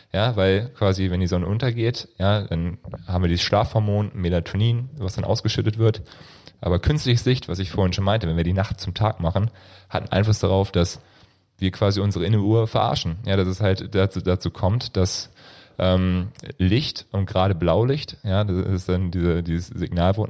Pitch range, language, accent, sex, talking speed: 95-110 Hz, German, German, male, 185 wpm